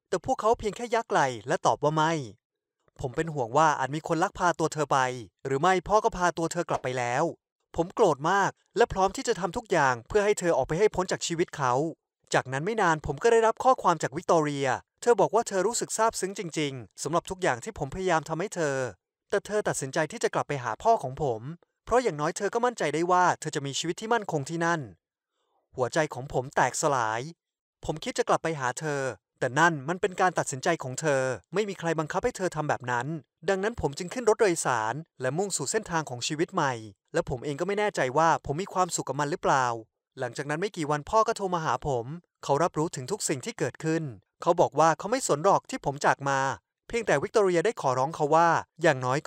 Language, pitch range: Thai, 140-190 Hz